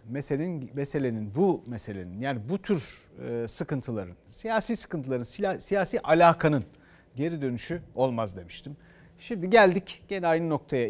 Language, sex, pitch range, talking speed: Turkish, male, 130-185 Hz, 115 wpm